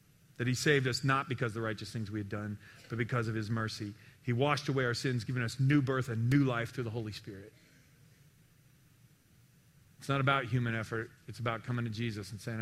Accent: American